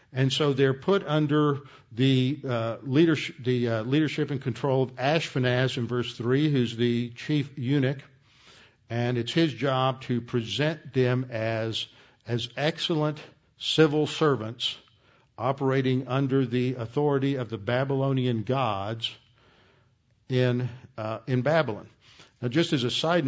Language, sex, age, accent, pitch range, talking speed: English, male, 50-69, American, 115-140 Hz, 130 wpm